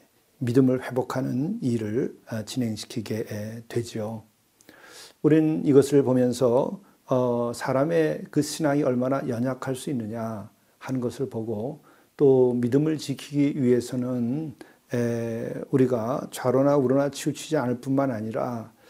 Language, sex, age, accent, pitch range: Korean, male, 40-59, native, 115-135 Hz